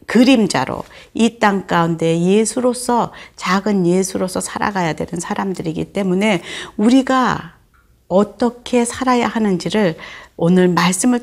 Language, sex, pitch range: Korean, female, 170-225 Hz